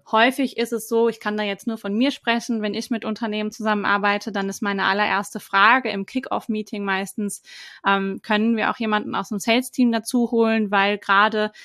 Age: 20-39